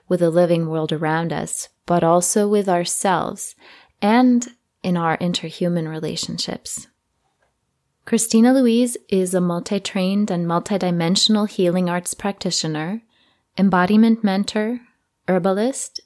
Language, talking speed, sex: English, 105 wpm, female